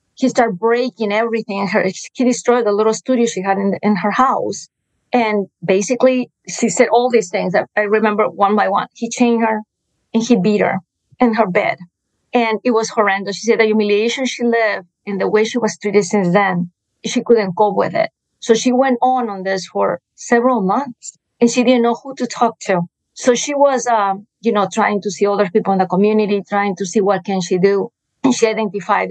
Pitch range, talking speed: 195-235 Hz, 215 wpm